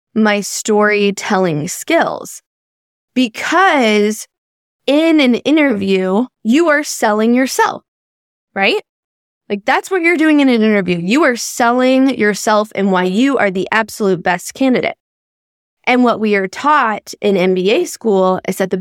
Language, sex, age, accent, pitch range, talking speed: English, female, 10-29, American, 190-255 Hz, 135 wpm